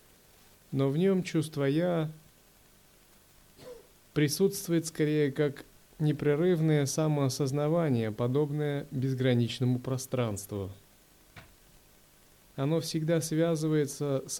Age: 30-49